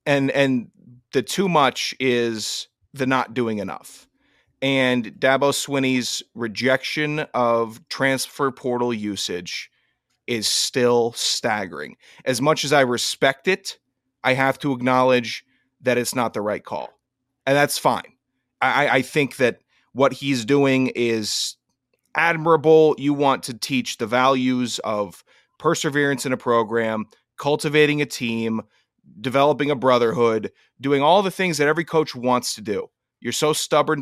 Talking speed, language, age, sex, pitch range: 140 wpm, English, 30-49, male, 120-150 Hz